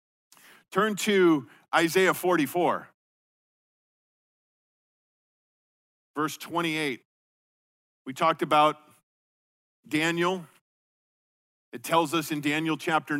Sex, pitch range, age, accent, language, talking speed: male, 150-180 Hz, 50-69, American, English, 75 wpm